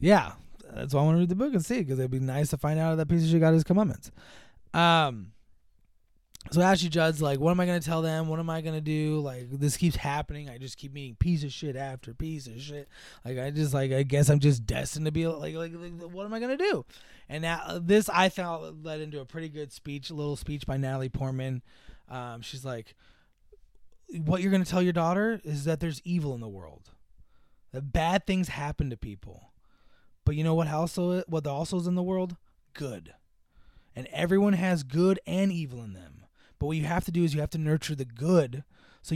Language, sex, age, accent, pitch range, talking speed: English, male, 20-39, American, 135-175 Hz, 230 wpm